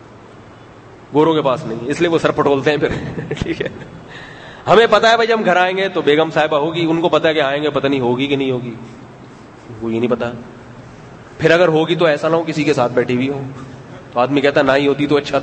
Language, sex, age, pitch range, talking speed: Urdu, male, 30-49, 140-175 Hz, 240 wpm